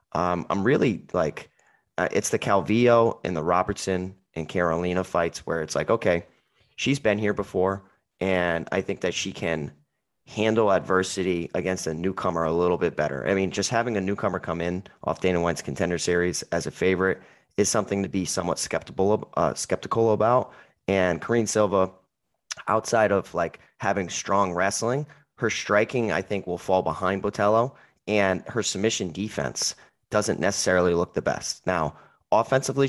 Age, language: 30-49, English